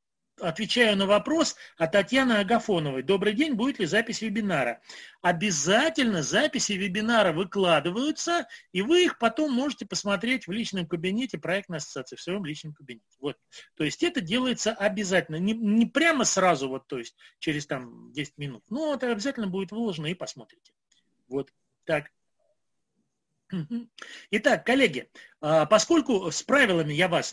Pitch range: 170-235 Hz